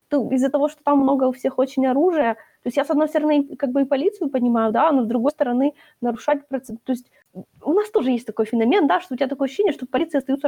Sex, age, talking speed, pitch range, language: female, 20-39, 260 wpm, 230-280 Hz, Ukrainian